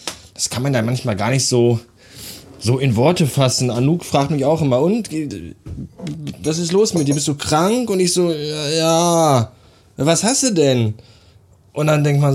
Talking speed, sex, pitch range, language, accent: 185 wpm, male, 115-155 Hz, German, German